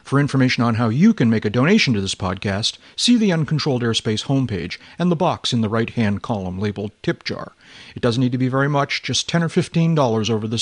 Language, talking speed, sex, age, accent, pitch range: English, 225 wpm, male, 40-59, American, 110-140 Hz